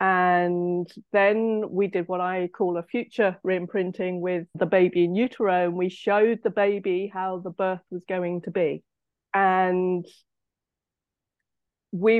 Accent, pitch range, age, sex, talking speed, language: British, 180-205 Hz, 30-49, female, 145 wpm, English